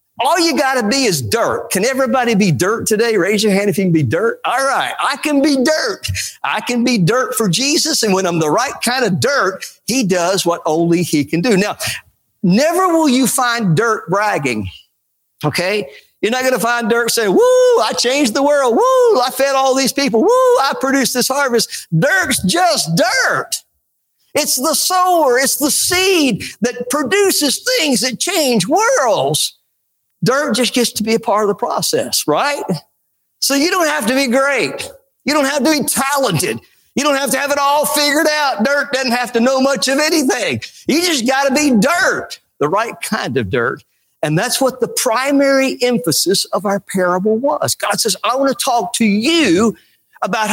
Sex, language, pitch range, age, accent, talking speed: male, English, 210-295 Hz, 50-69, American, 190 wpm